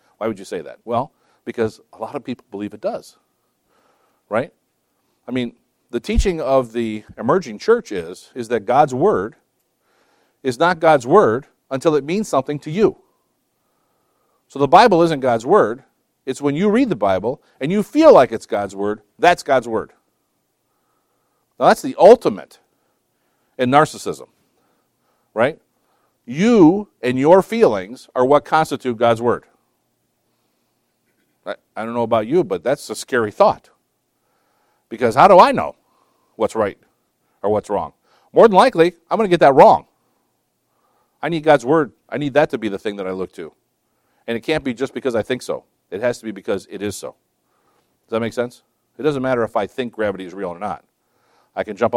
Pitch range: 120-170 Hz